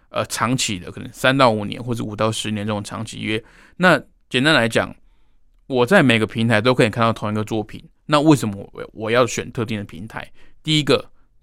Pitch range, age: 105-125 Hz, 20-39